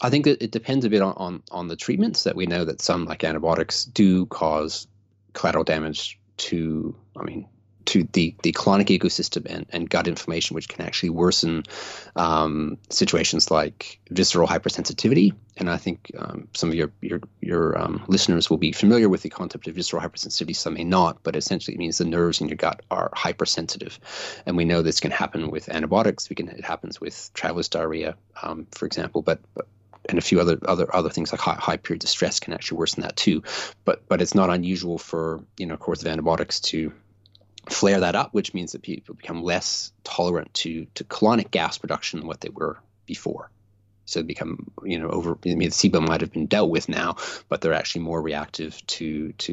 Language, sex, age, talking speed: English, male, 30-49, 205 wpm